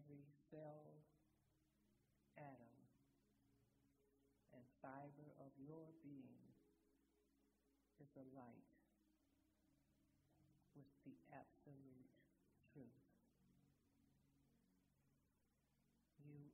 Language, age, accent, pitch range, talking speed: English, 60-79, American, 95-150 Hz, 60 wpm